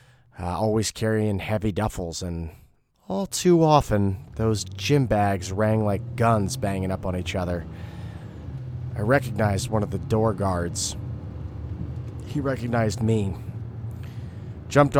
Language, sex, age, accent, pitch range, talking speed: English, male, 30-49, American, 100-125 Hz, 125 wpm